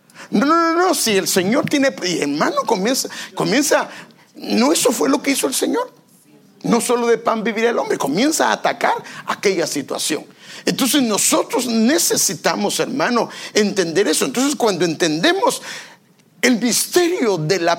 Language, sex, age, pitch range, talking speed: English, male, 50-69, 195-285 Hz, 150 wpm